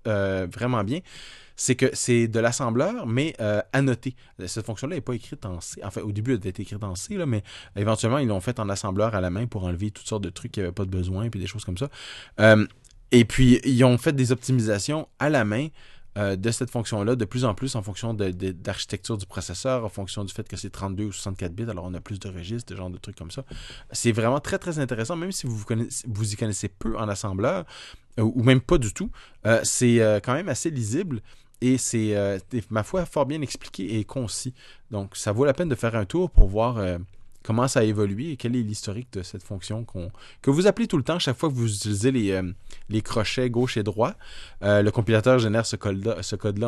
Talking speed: 245 wpm